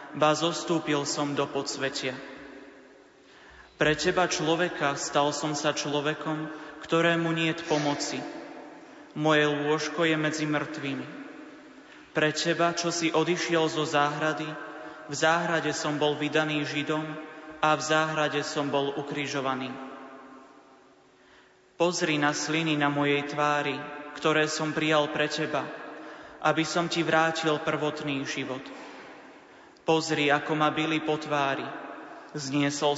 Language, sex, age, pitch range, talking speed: Slovak, male, 30-49, 145-160 Hz, 115 wpm